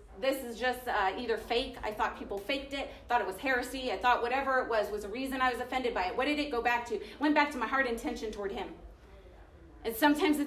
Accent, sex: American, female